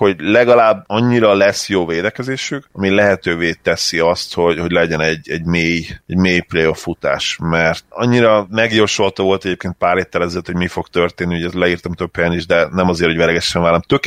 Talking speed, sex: 185 wpm, male